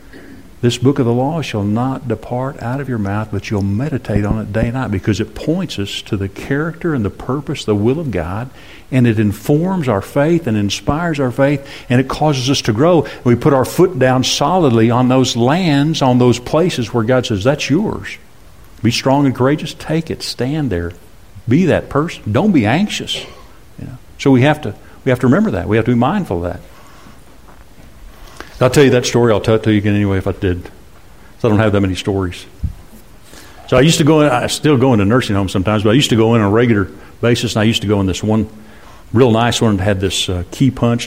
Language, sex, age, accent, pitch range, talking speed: English, male, 50-69, American, 105-135 Hz, 230 wpm